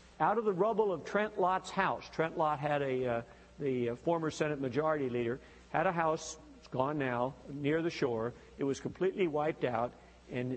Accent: American